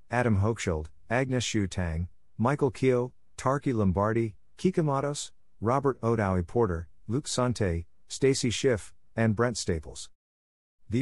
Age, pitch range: 50-69, 90-120 Hz